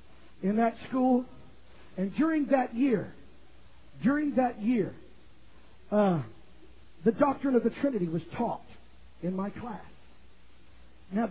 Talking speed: 115 wpm